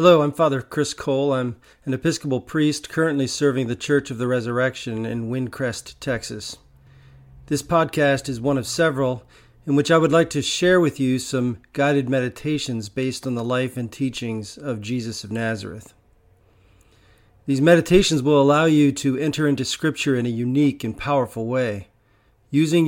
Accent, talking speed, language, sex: American, 165 wpm, English, male